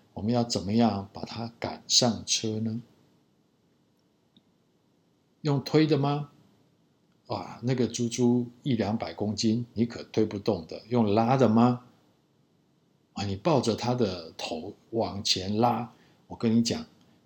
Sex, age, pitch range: male, 50-69, 105-135 Hz